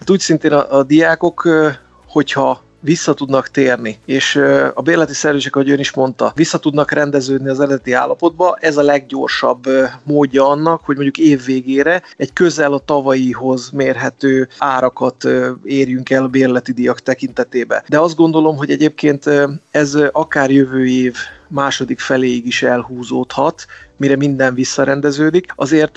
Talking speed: 135 wpm